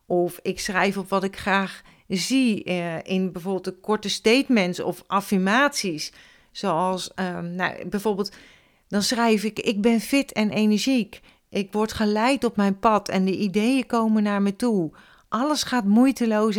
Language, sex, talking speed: Dutch, female, 155 wpm